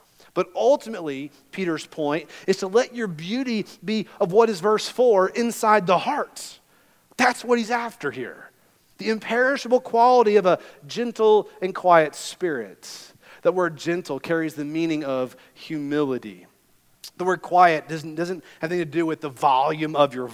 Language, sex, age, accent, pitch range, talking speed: English, male, 40-59, American, 155-210 Hz, 160 wpm